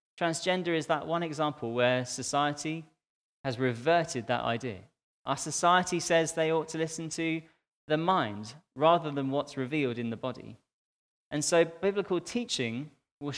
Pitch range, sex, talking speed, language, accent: 130-165 Hz, male, 150 wpm, English, British